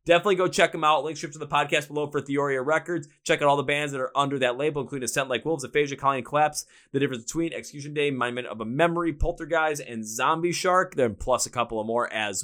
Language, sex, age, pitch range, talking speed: English, male, 20-39, 135-175 Hz, 245 wpm